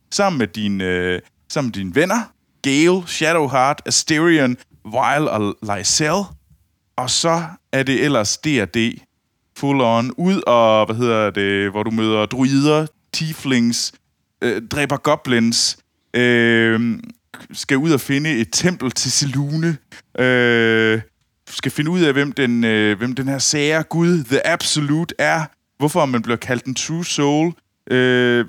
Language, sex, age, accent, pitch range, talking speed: Danish, male, 20-39, native, 105-150 Hz, 125 wpm